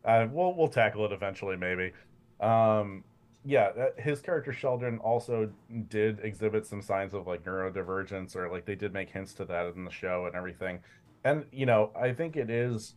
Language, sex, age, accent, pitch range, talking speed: English, male, 30-49, American, 95-115 Hz, 185 wpm